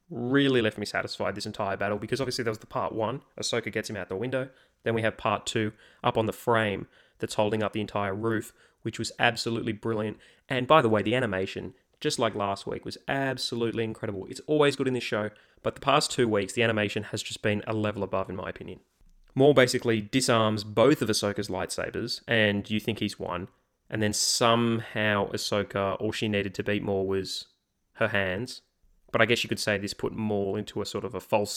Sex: male